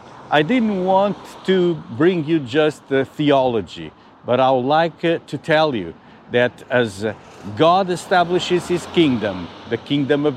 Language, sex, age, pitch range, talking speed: English, male, 50-69, 115-155 Hz, 145 wpm